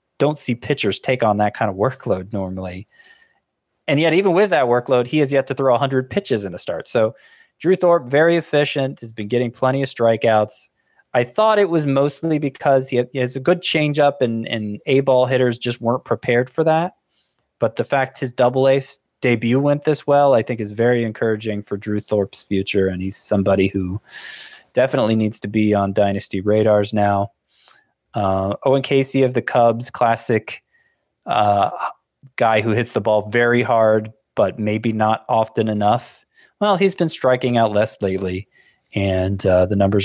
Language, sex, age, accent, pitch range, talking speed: English, male, 20-39, American, 105-135 Hz, 180 wpm